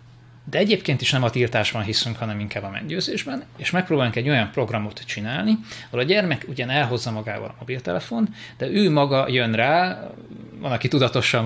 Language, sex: Hungarian, male